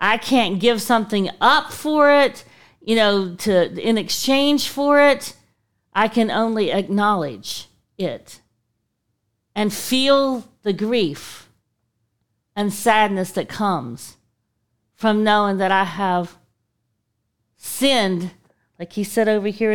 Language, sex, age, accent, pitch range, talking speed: English, female, 50-69, American, 175-255 Hz, 115 wpm